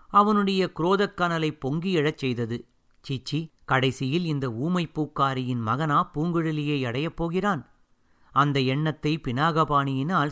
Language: Tamil